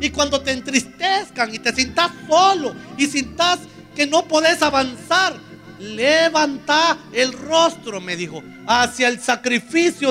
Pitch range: 195-290 Hz